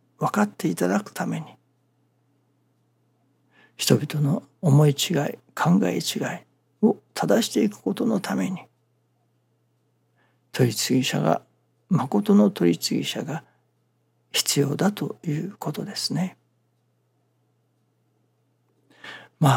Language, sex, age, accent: Japanese, male, 60-79, native